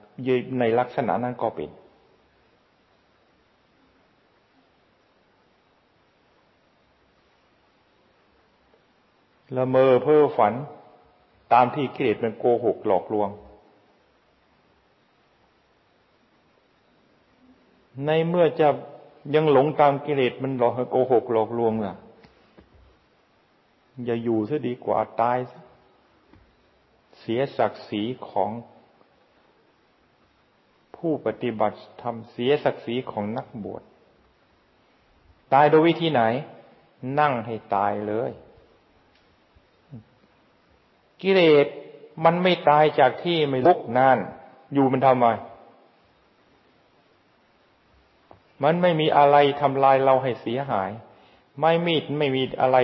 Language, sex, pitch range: Thai, male, 115-145 Hz